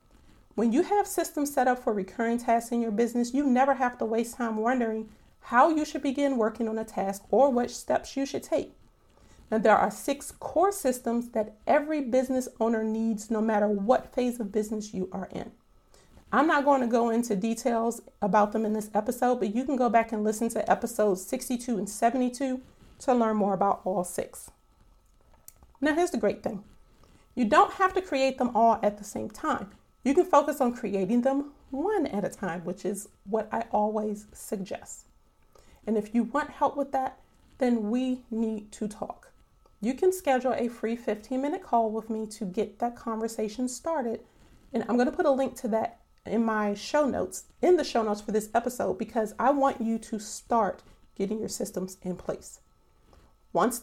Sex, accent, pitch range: female, American, 215-265 Hz